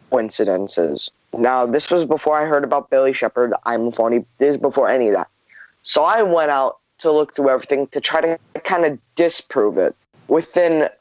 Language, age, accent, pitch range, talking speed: English, 10-29, American, 135-155 Hz, 185 wpm